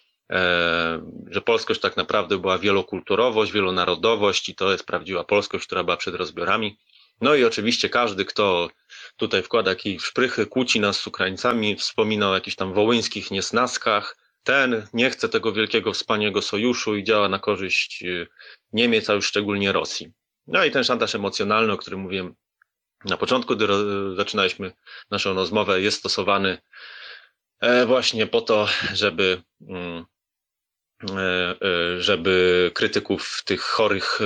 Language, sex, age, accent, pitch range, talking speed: Polish, male, 30-49, native, 90-105 Hz, 140 wpm